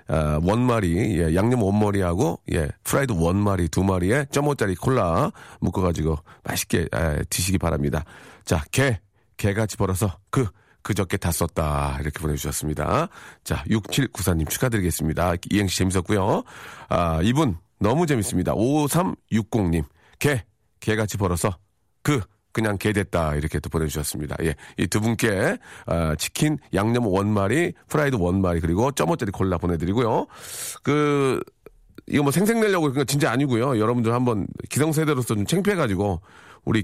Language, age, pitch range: Korean, 40-59, 90-120 Hz